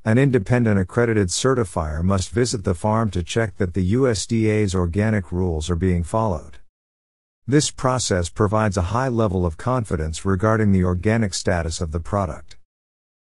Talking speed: 150 wpm